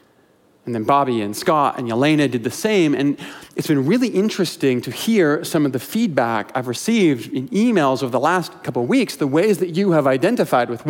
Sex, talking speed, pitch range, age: male, 210 wpm, 130-180 Hz, 40-59